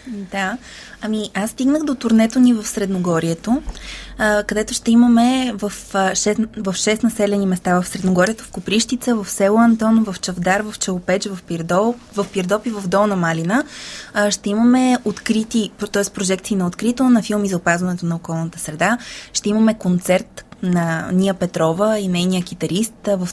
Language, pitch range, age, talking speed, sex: Bulgarian, 190-230 Hz, 20-39, 160 wpm, female